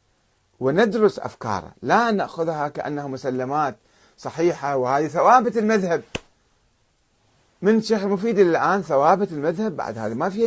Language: Arabic